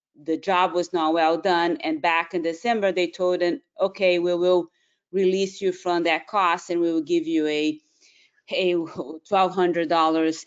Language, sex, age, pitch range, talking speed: English, female, 30-49, 165-200 Hz, 180 wpm